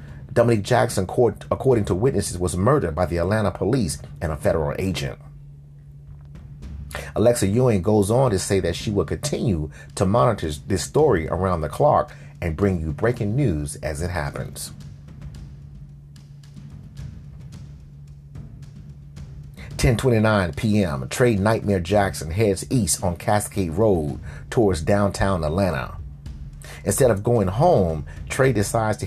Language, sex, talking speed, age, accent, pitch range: English, male, 125 wpm, 30-49, American, 75-105 Hz